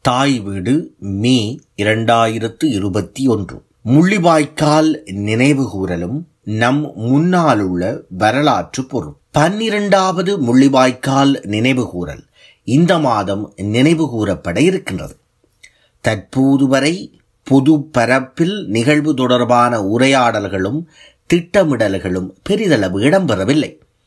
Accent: native